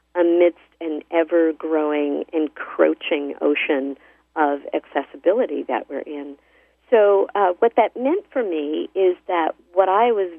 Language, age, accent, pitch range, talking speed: English, 50-69, American, 155-200 Hz, 125 wpm